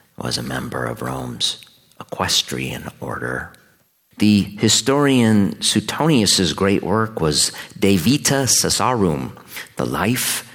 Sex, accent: male, American